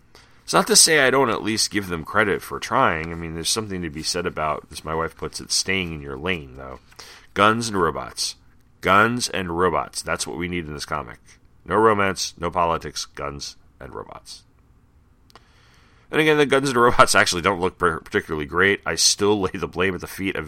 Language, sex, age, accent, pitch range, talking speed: English, male, 40-59, American, 80-95 Hz, 210 wpm